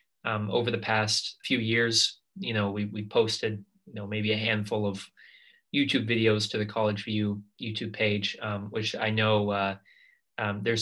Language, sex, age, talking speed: English, male, 20-39, 175 wpm